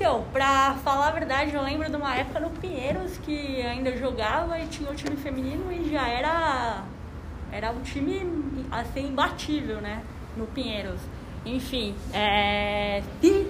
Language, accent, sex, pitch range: Portuguese, Brazilian, female, 225-280 Hz